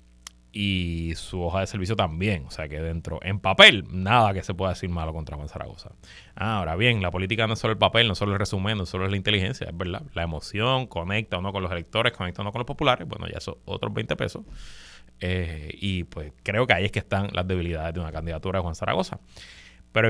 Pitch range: 85-115 Hz